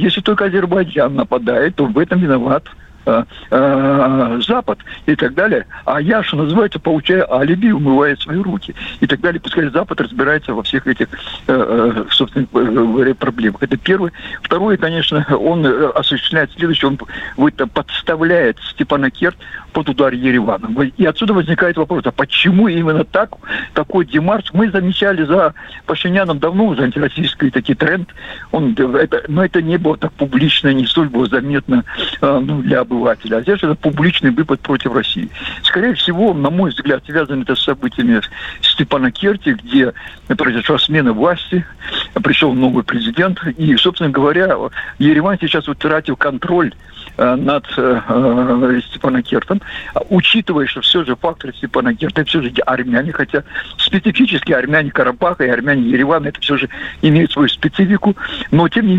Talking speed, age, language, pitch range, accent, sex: 140 wpm, 60-79, Russian, 135-190 Hz, native, male